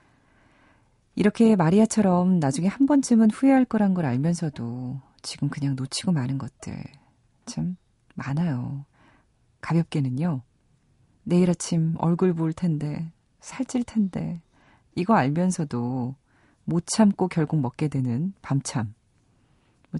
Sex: female